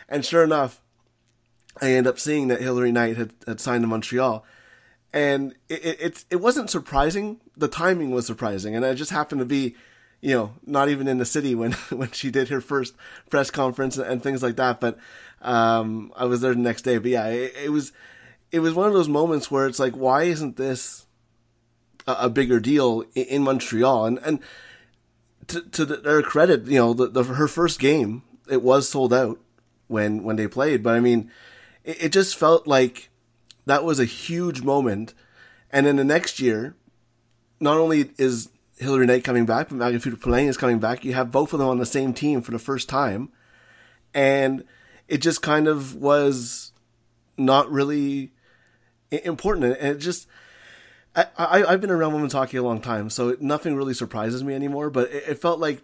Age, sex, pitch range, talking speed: 20-39, male, 120-145 Hz, 195 wpm